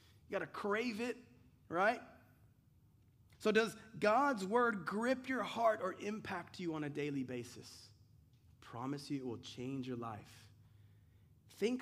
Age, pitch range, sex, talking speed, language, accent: 30-49, 130-200 Hz, male, 145 wpm, English, American